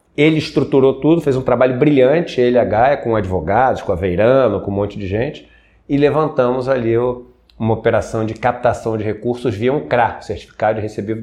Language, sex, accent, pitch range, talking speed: Portuguese, male, Brazilian, 110-145 Hz, 180 wpm